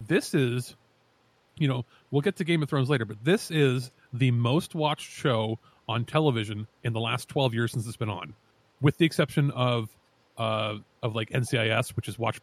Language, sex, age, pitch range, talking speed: English, male, 30-49, 115-145 Hz, 195 wpm